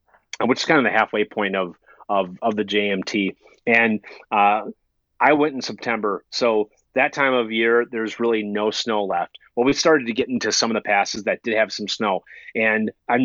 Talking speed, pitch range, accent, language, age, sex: 205 wpm, 110-130 Hz, American, English, 30-49, male